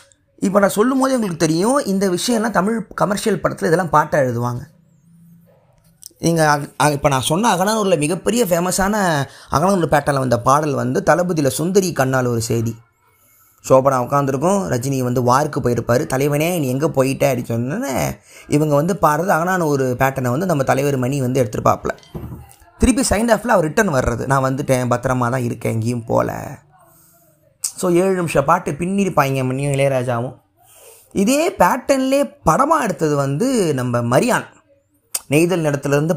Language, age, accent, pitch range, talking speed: Tamil, 20-39, native, 130-185 Hz, 140 wpm